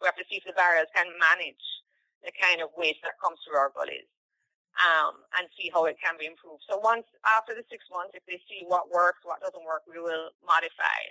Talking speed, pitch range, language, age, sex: 230 wpm, 175-215 Hz, English, 30-49, female